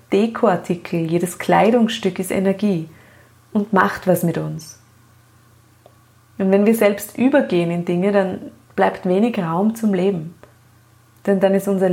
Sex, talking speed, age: female, 135 wpm, 30-49